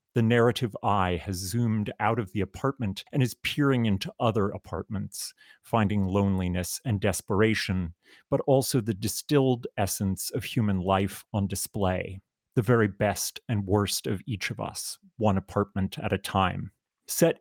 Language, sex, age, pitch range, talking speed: English, male, 30-49, 95-120 Hz, 150 wpm